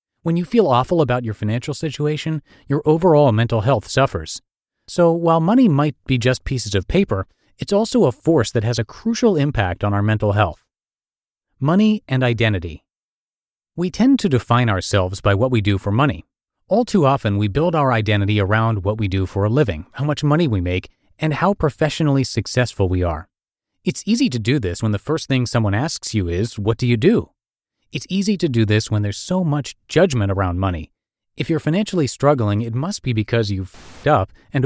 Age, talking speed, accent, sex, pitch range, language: 30-49, 200 wpm, American, male, 105-150 Hz, English